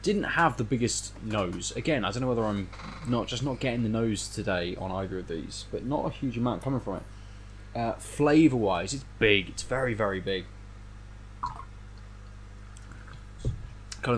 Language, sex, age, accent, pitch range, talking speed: English, male, 20-39, British, 100-120 Hz, 170 wpm